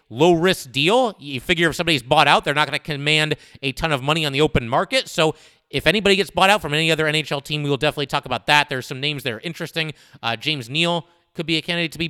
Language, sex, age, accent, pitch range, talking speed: English, male, 30-49, American, 140-170 Hz, 265 wpm